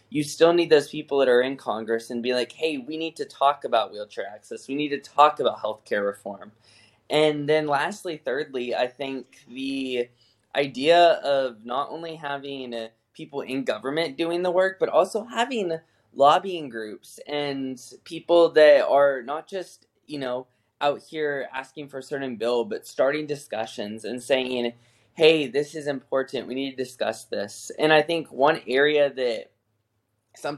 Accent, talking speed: American, 170 wpm